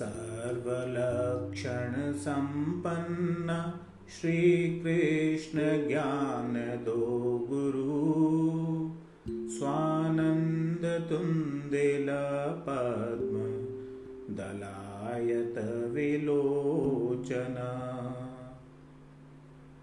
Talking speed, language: 35 wpm, Hindi